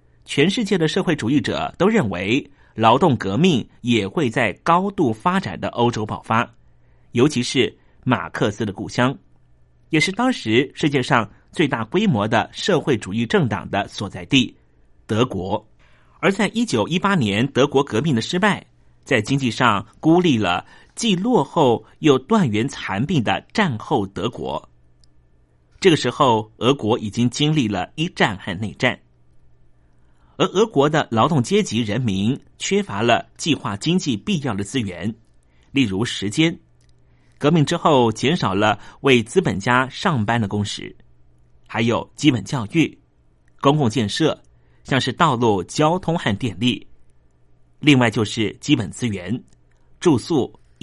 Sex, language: male, Chinese